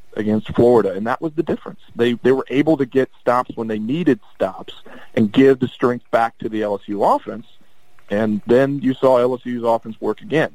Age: 40-59